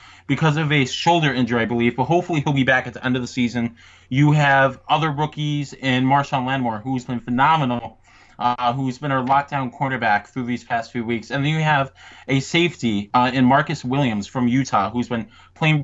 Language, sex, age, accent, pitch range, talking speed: English, male, 20-39, American, 125-150 Hz, 205 wpm